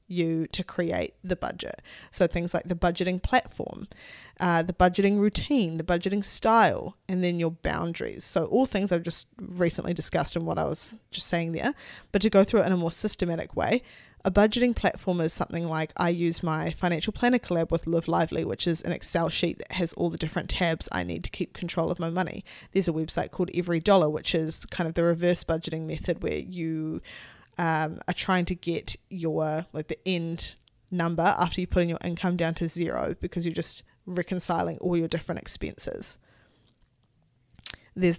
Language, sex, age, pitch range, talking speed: English, female, 20-39, 165-185 Hz, 195 wpm